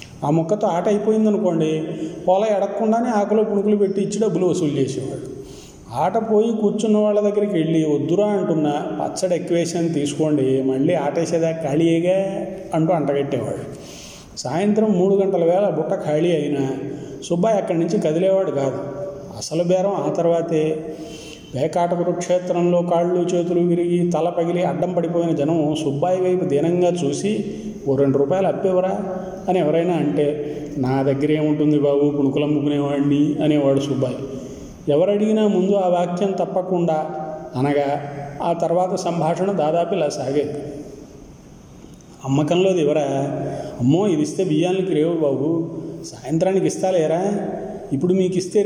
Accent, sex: native, male